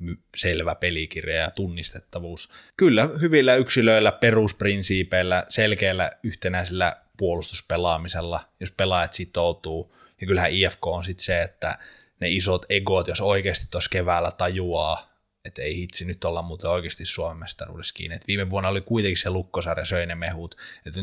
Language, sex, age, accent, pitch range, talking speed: Finnish, male, 20-39, native, 85-100 Hz, 140 wpm